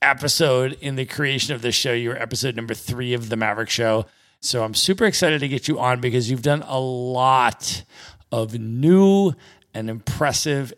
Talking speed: 180 wpm